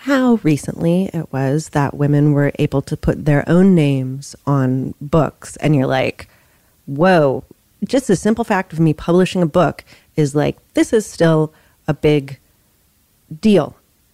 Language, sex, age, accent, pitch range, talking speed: English, female, 30-49, American, 130-170 Hz, 155 wpm